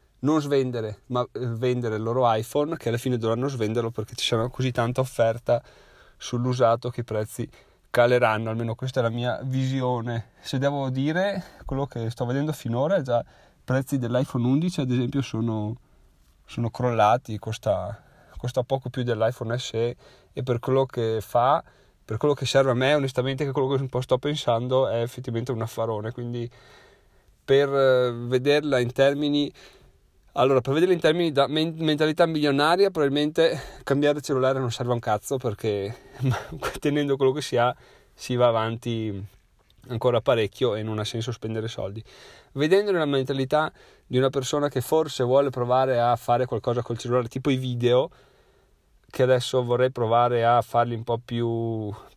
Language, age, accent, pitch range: Italian, 30-49, native, 115-135 Hz